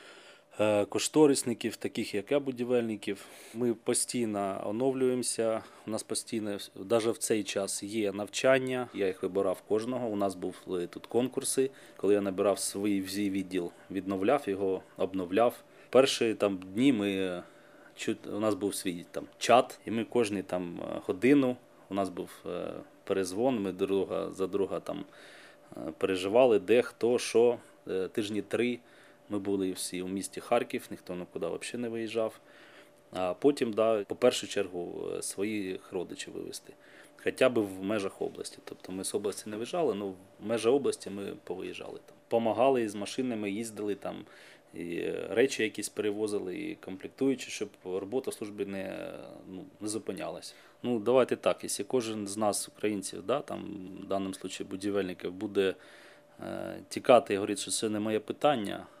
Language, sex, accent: Ukrainian, male, native